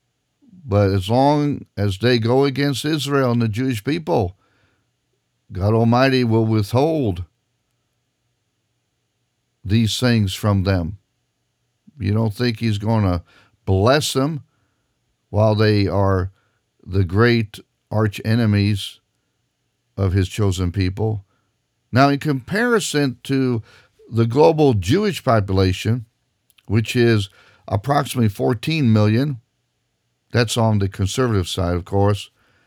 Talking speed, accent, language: 110 wpm, American, English